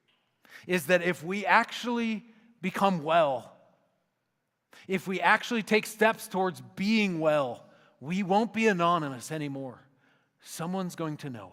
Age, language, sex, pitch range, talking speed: 50-69, English, male, 130-165 Hz, 125 wpm